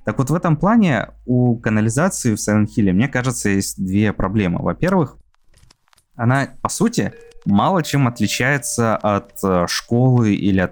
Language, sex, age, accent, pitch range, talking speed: Russian, male, 20-39, native, 100-130 Hz, 140 wpm